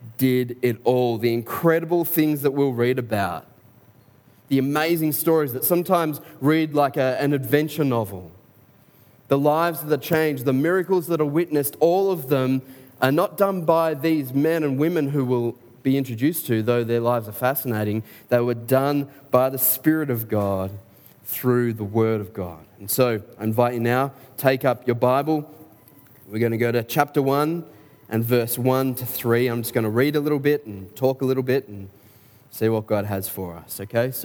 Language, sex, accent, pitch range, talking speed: English, male, Australian, 115-150 Hz, 195 wpm